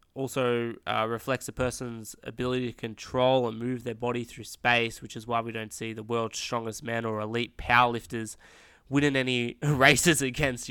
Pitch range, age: 110-125 Hz, 20-39